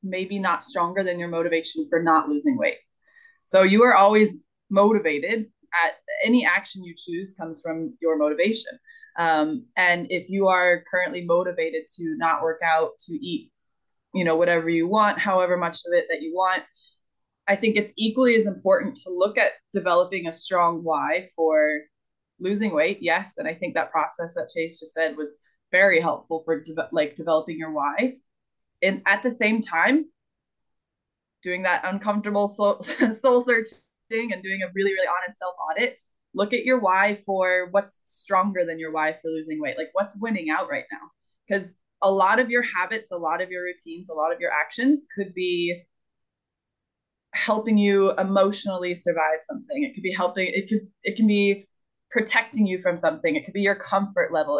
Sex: female